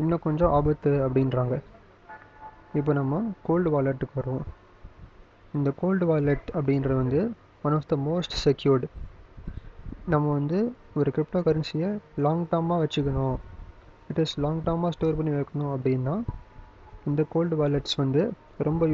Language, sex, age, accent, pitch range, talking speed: English, male, 20-39, Indian, 130-160 Hz, 80 wpm